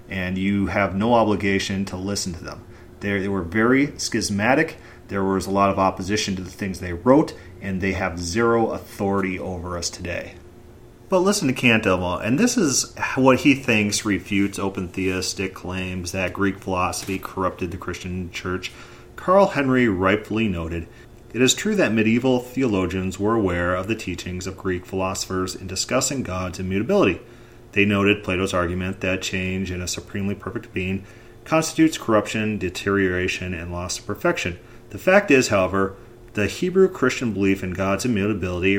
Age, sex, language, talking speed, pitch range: 30-49, male, English, 160 wpm, 95-120 Hz